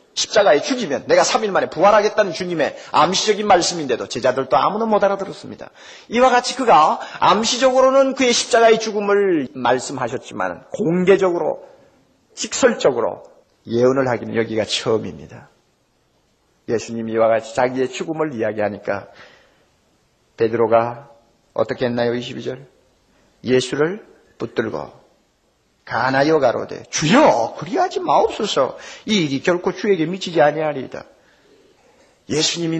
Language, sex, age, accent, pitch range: Korean, male, 40-59, native, 135-210 Hz